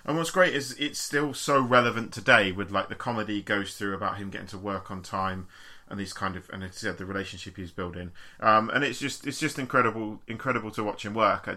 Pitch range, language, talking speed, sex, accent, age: 95-115 Hz, English, 240 wpm, male, British, 30-49